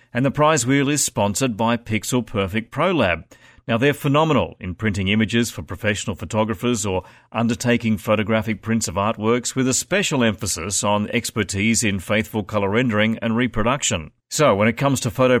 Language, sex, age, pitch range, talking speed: English, male, 40-59, 105-125 Hz, 170 wpm